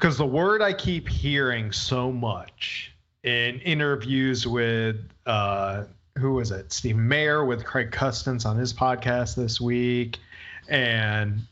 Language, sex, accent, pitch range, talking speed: English, male, American, 105-135 Hz, 135 wpm